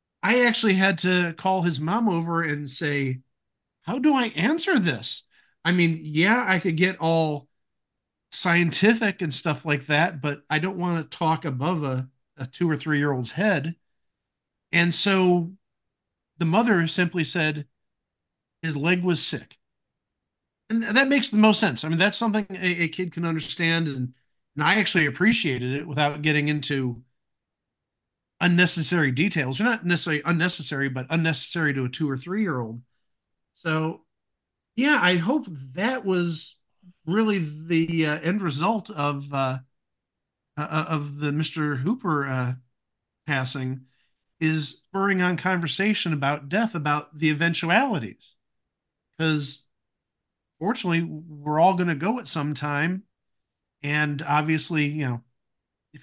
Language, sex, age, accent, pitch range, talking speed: English, male, 50-69, American, 145-180 Hz, 140 wpm